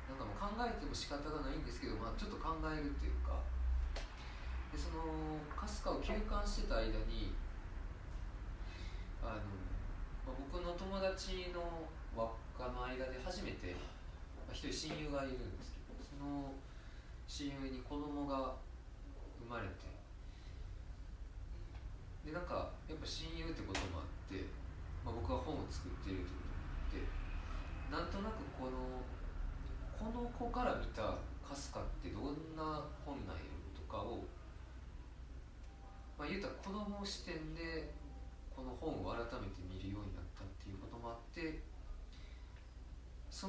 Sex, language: male, Japanese